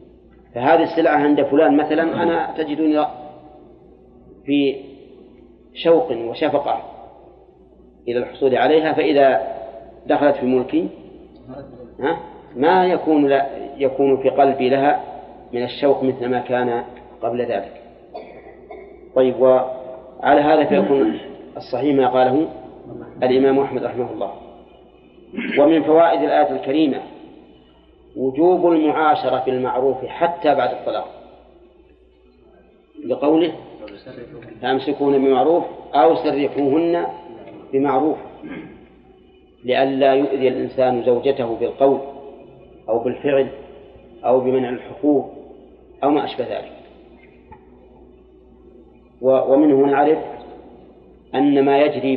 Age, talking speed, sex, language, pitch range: 40-59, 90 wpm, male, Arabic, 125-150 Hz